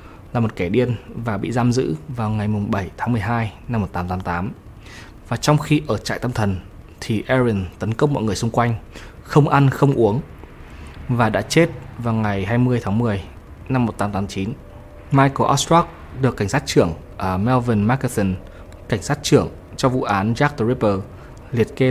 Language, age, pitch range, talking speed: Vietnamese, 20-39, 100-130 Hz, 180 wpm